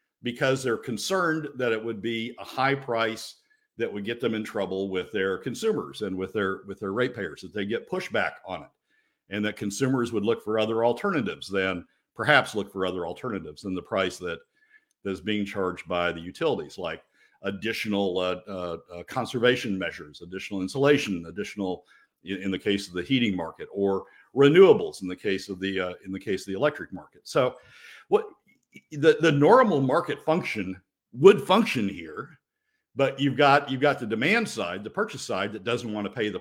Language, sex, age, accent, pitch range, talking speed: English, male, 60-79, American, 100-145 Hz, 185 wpm